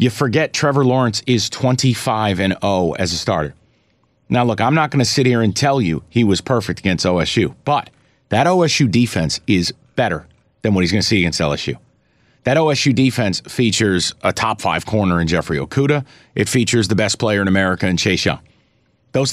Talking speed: 185 wpm